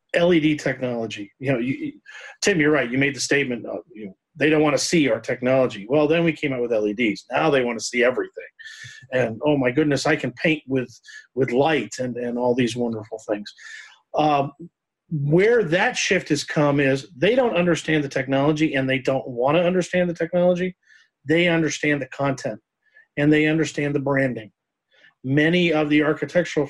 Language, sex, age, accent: English, male, 40-59, American